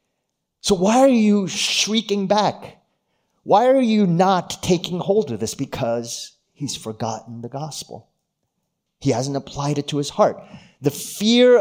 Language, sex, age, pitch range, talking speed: English, male, 30-49, 125-190 Hz, 145 wpm